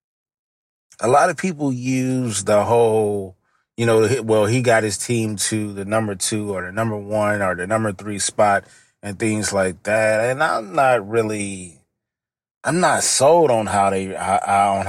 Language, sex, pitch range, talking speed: English, male, 105-135 Hz, 170 wpm